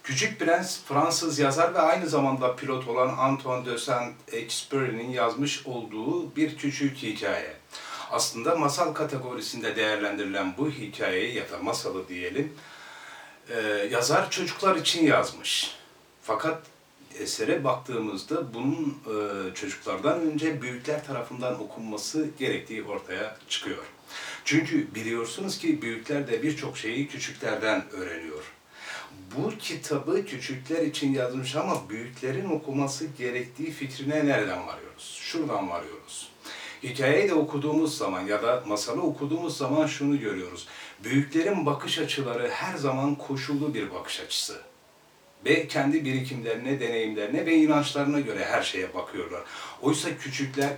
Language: Turkish